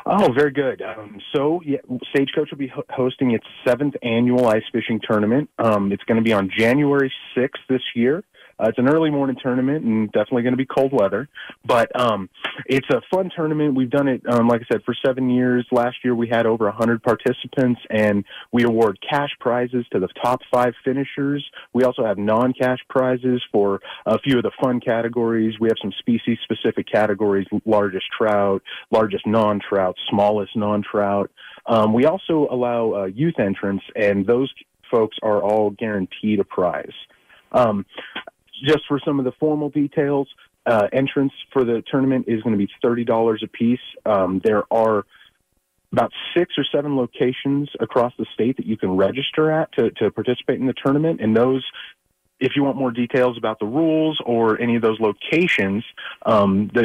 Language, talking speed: English, 175 wpm